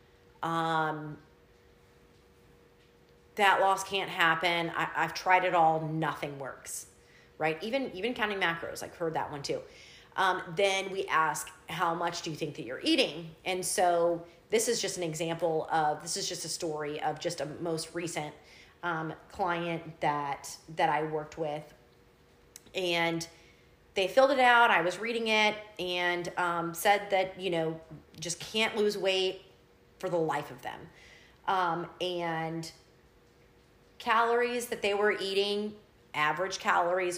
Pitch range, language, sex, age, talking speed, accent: 160-210 Hz, English, female, 30-49, 150 wpm, American